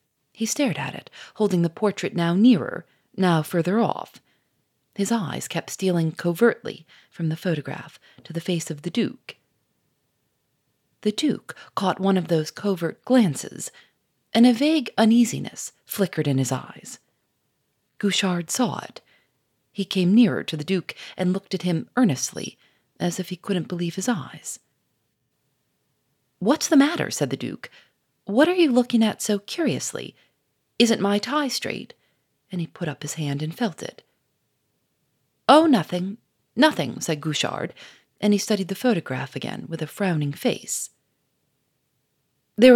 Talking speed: 145 wpm